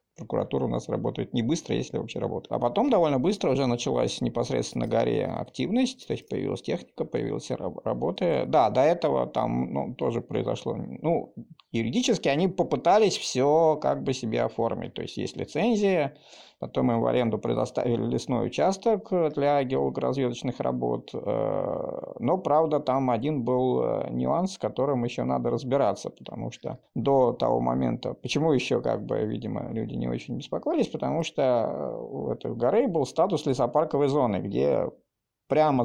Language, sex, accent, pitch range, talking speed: Russian, male, native, 115-150 Hz, 150 wpm